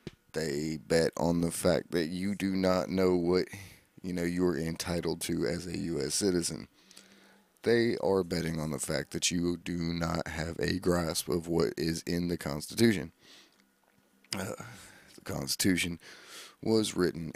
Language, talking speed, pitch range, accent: English, 150 wpm, 80-95 Hz, American